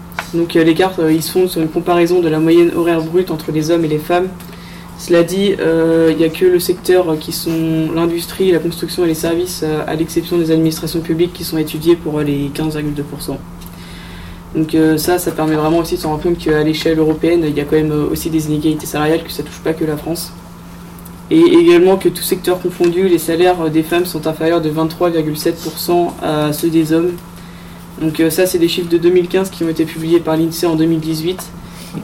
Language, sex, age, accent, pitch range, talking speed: French, female, 20-39, French, 155-175 Hz, 215 wpm